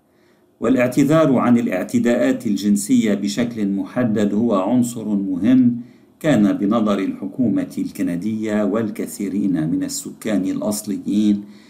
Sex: male